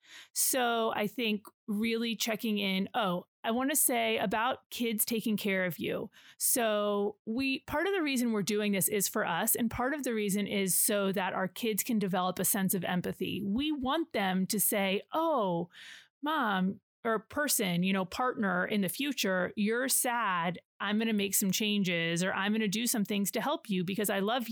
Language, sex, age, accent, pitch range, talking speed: English, female, 30-49, American, 190-230 Hz, 200 wpm